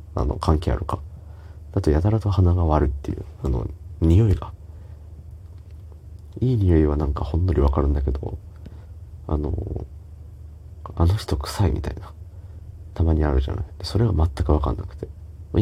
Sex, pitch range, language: male, 75-90 Hz, Japanese